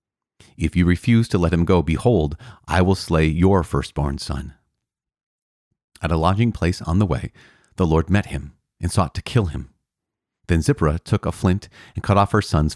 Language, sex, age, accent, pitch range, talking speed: English, male, 30-49, American, 80-100 Hz, 190 wpm